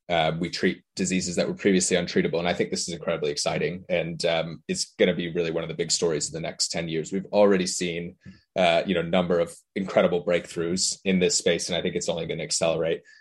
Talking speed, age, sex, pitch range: 245 wpm, 20-39, male, 90-100 Hz